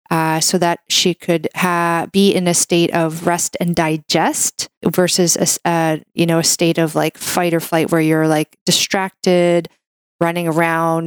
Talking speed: 155 wpm